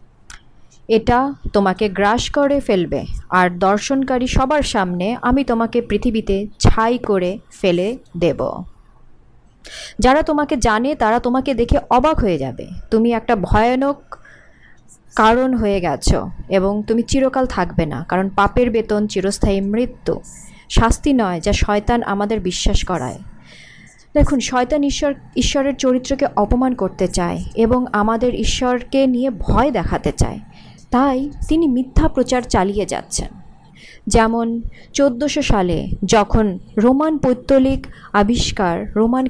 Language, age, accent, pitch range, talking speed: Bengali, 30-49, native, 205-265 Hz, 120 wpm